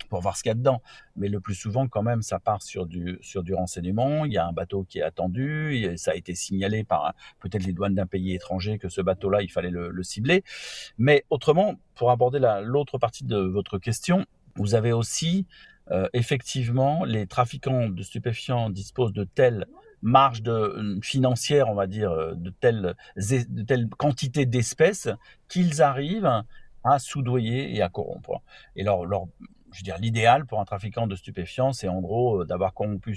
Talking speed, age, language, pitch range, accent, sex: 195 wpm, 50-69, French, 95-130 Hz, French, male